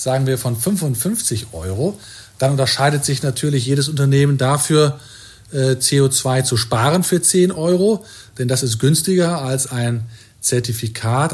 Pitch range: 110-140 Hz